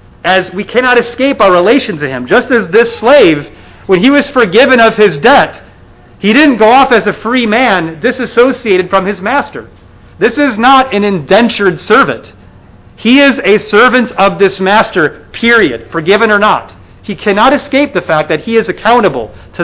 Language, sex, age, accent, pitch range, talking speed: English, male, 40-59, American, 165-235 Hz, 175 wpm